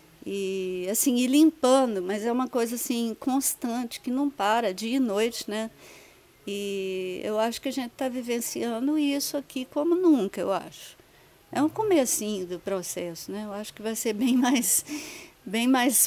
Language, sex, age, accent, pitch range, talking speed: Portuguese, female, 50-69, Brazilian, 200-265 Hz, 170 wpm